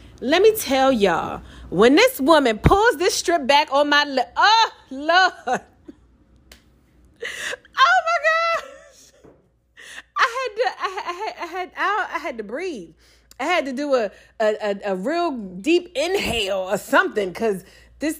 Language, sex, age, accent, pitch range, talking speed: English, female, 30-49, American, 215-345 Hz, 150 wpm